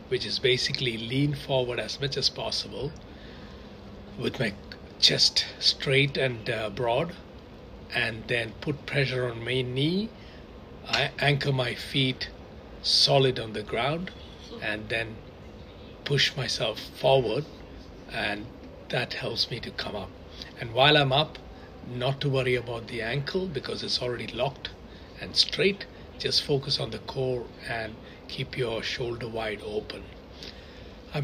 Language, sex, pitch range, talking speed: English, male, 115-140 Hz, 135 wpm